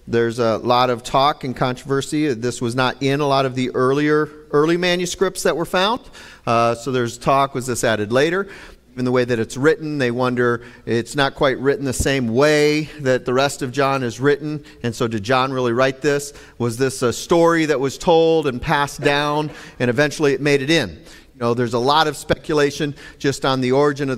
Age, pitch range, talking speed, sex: 40-59, 120-155 Hz, 215 wpm, male